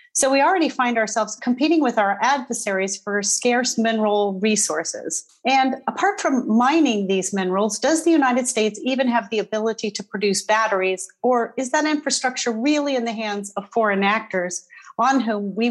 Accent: American